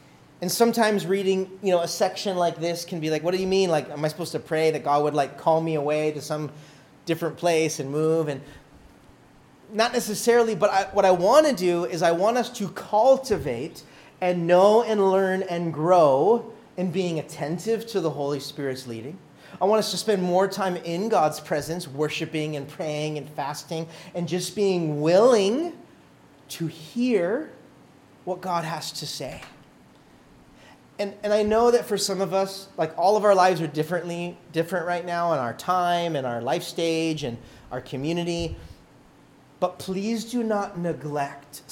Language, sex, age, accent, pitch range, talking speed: English, male, 30-49, American, 155-205 Hz, 180 wpm